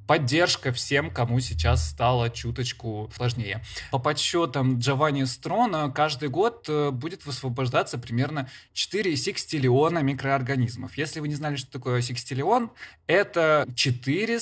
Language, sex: Russian, male